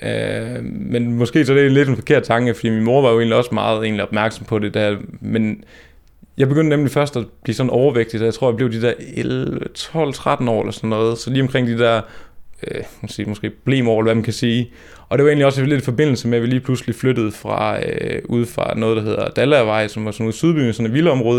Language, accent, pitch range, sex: Danish, native, 110-130 Hz, male